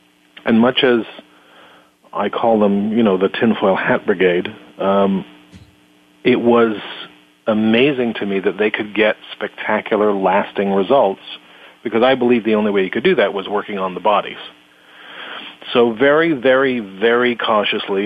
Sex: male